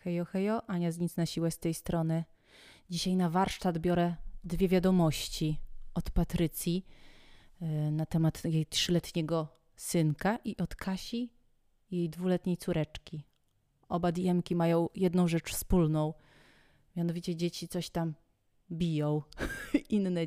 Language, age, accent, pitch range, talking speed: Polish, 30-49, native, 160-185 Hz, 125 wpm